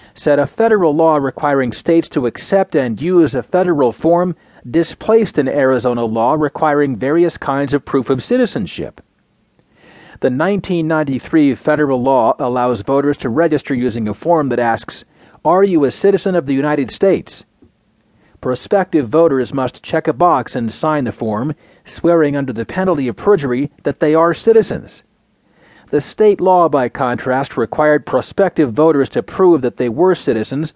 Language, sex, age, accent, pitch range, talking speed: English, male, 40-59, American, 130-165 Hz, 155 wpm